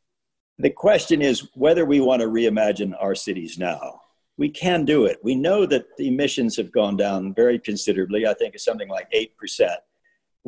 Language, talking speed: English, 180 wpm